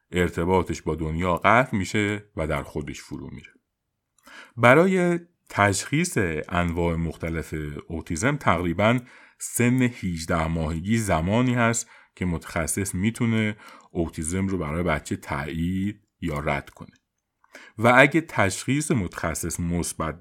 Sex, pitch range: male, 85-115 Hz